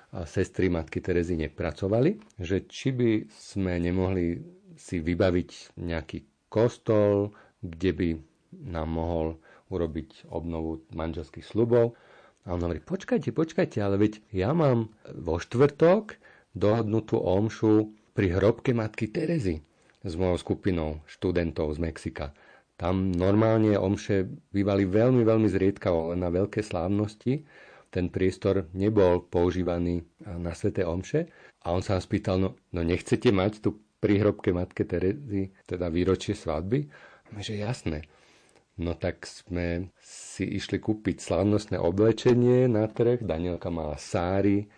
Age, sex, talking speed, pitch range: 50-69, male, 125 wpm, 85-110 Hz